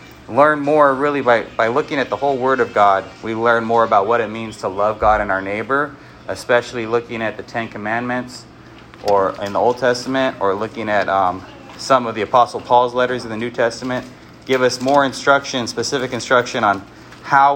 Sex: male